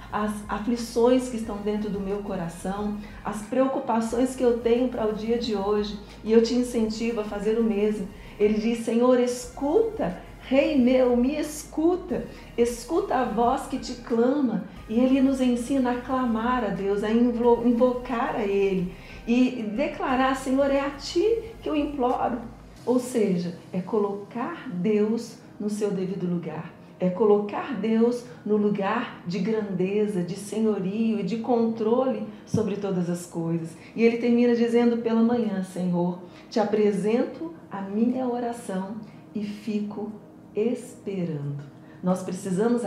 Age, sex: 40-59, female